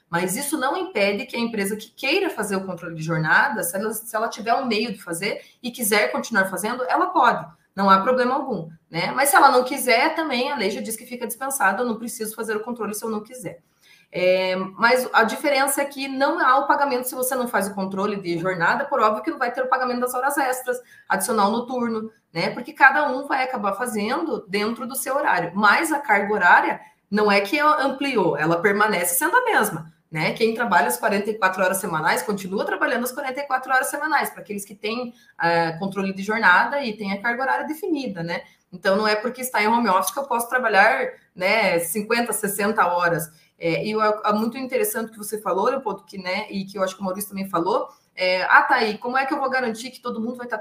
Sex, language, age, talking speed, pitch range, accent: female, Portuguese, 20-39, 230 wpm, 195-260 Hz, Brazilian